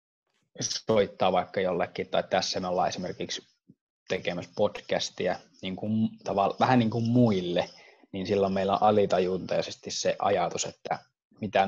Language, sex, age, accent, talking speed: Finnish, male, 20-39, native, 135 wpm